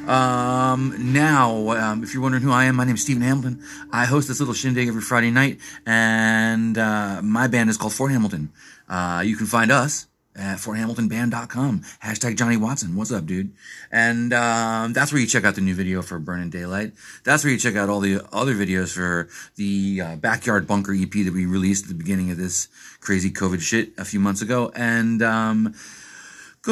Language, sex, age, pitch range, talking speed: English, male, 30-49, 100-130 Hz, 200 wpm